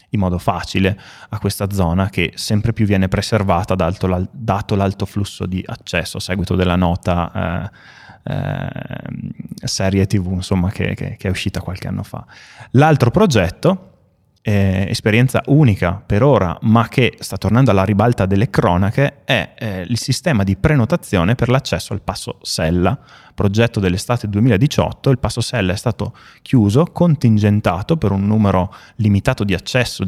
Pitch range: 95-125 Hz